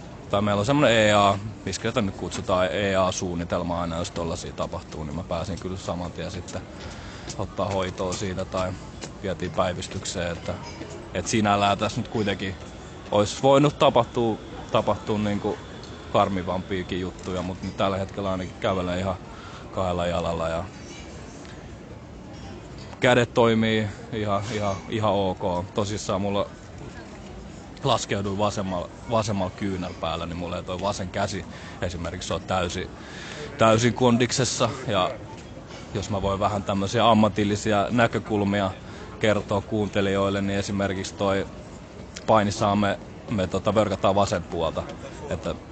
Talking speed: 115 wpm